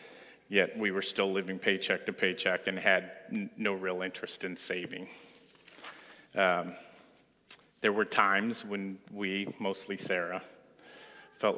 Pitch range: 90-100 Hz